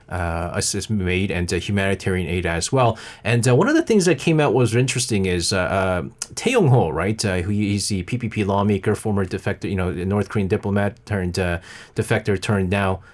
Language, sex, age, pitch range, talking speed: English, male, 30-49, 105-140 Hz, 190 wpm